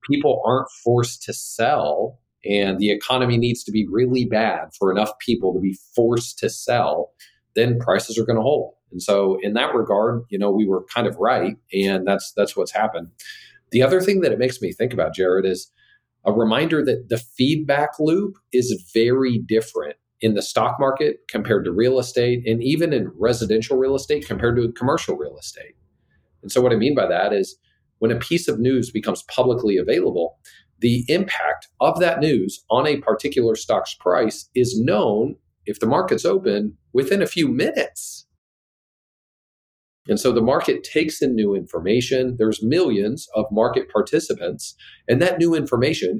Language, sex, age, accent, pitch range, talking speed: English, male, 40-59, American, 110-145 Hz, 175 wpm